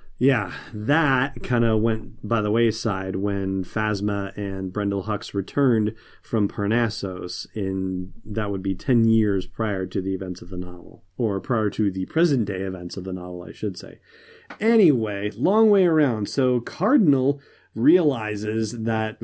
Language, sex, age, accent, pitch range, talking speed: English, male, 30-49, American, 105-125 Hz, 155 wpm